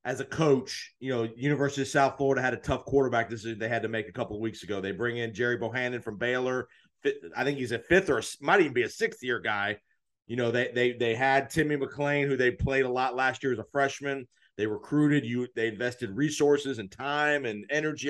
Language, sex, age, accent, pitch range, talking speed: English, male, 40-59, American, 120-145 Hz, 240 wpm